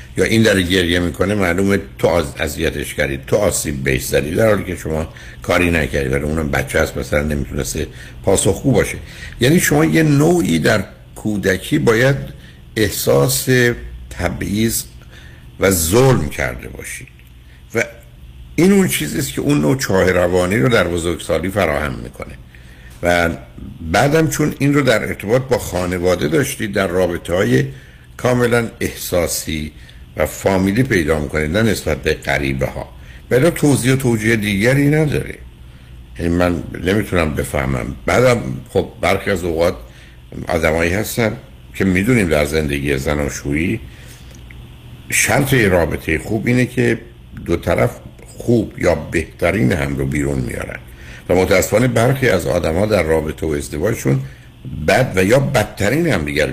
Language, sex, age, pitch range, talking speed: Persian, male, 60-79, 65-105 Hz, 135 wpm